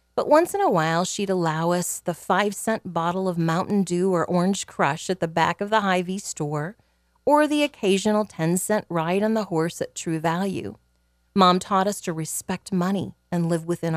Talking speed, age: 190 wpm, 40-59